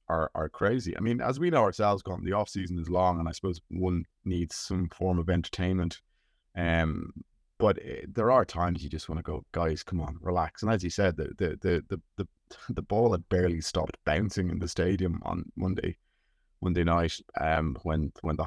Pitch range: 80-95 Hz